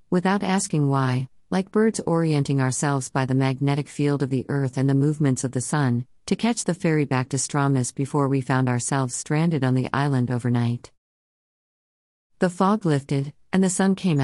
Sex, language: female, English